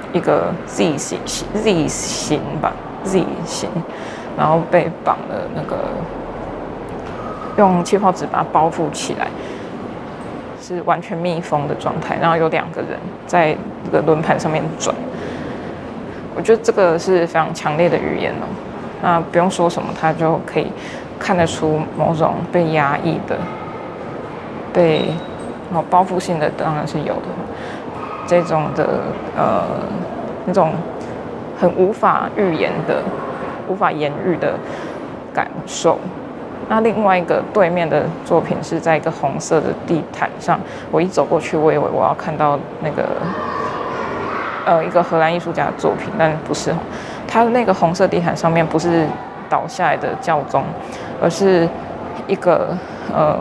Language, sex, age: Chinese, female, 20-39